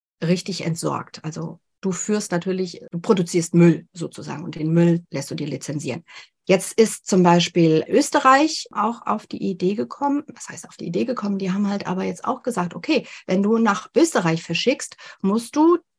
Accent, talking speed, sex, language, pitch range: German, 180 wpm, female, German, 170-225 Hz